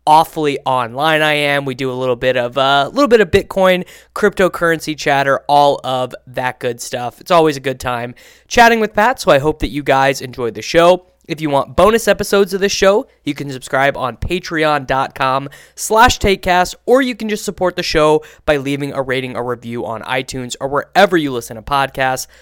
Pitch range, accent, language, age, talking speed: 135-185 Hz, American, English, 20-39, 205 wpm